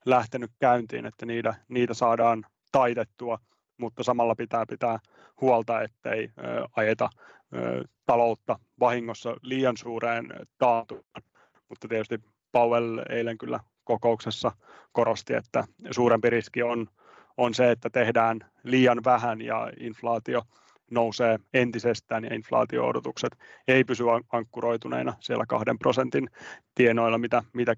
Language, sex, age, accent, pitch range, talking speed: Finnish, male, 30-49, native, 115-135 Hz, 110 wpm